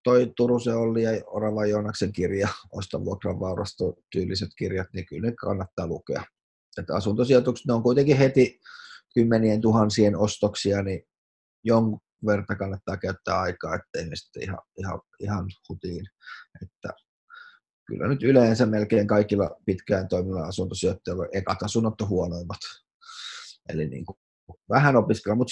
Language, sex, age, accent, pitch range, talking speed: Finnish, male, 30-49, native, 105-125 Hz, 135 wpm